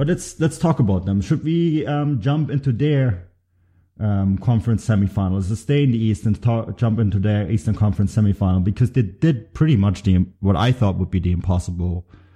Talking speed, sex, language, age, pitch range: 200 wpm, male, English, 30-49, 95-110 Hz